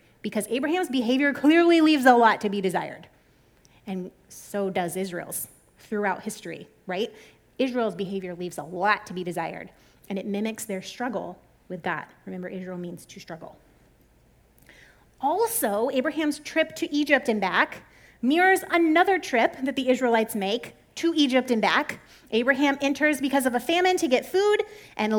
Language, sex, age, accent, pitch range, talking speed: English, female, 30-49, American, 220-320 Hz, 155 wpm